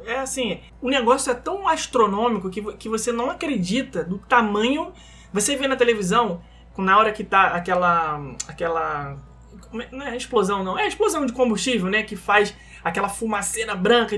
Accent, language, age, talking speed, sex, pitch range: Brazilian, Portuguese, 20-39, 165 wpm, male, 195-265 Hz